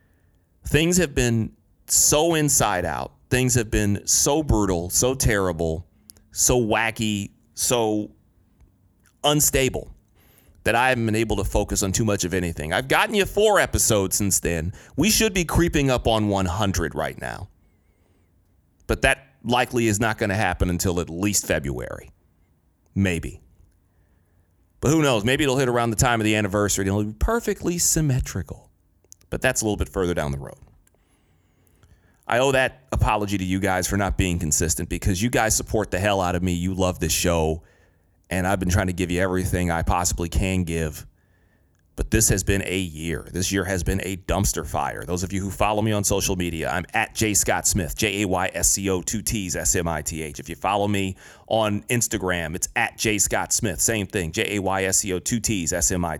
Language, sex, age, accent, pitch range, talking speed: English, male, 30-49, American, 90-110 Hz, 185 wpm